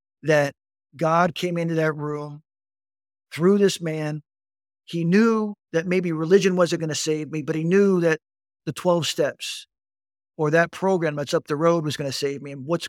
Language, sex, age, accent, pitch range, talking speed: English, male, 50-69, American, 140-190 Hz, 185 wpm